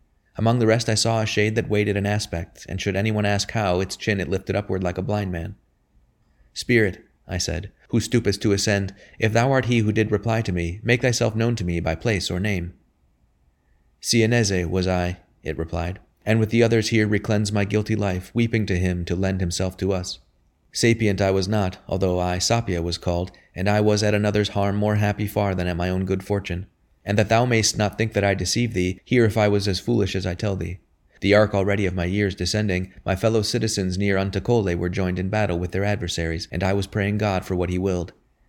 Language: English